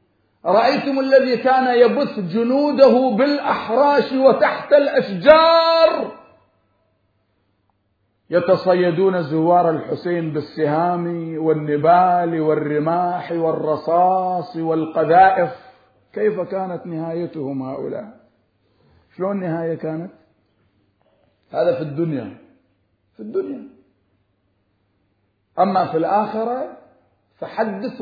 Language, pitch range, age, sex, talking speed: Arabic, 160-235 Hz, 50-69, male, 70 wpm